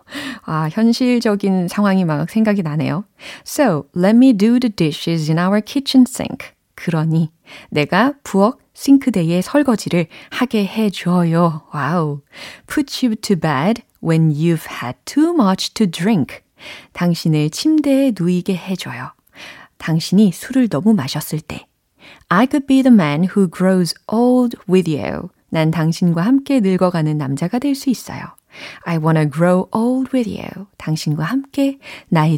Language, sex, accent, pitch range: Korean, female, native, 160-235 Hz